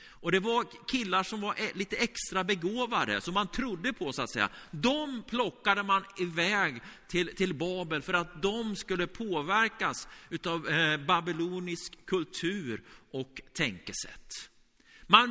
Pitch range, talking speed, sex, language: 175-225 Hz, 135 wpm, male, Swedish